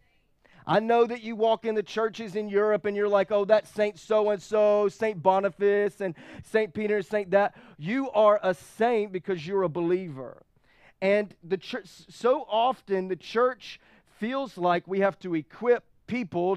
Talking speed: 165 wpm